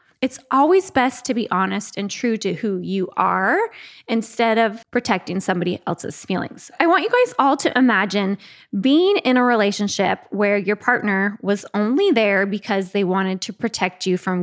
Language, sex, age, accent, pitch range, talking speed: English, female, 20-39, American, 205-300 Hz, 175 wpm